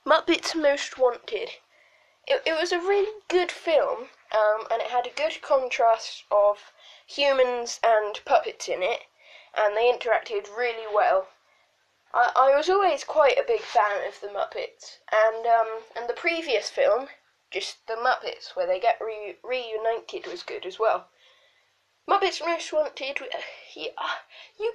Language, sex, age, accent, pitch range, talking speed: English, female, 10-29, British, 230-360 Hz, 150 wpm